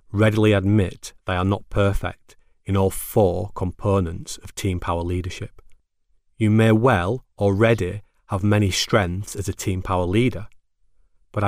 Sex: male